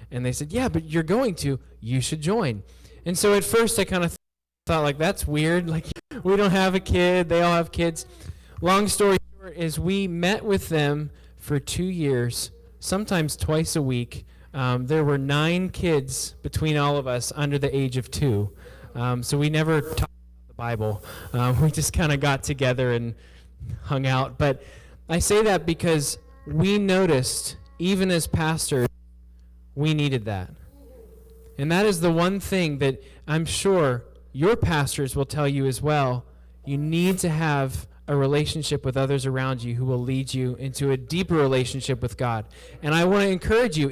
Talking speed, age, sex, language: 185 wpm, 10-29, male, English